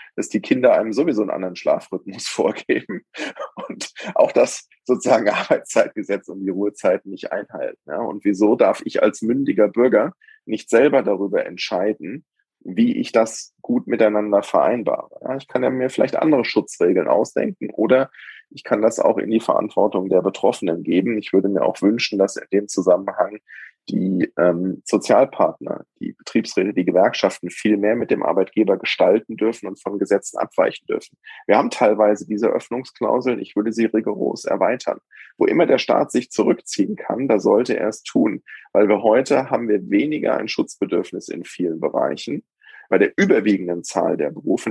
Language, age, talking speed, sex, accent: German, 20-39, 165 wpm, male, German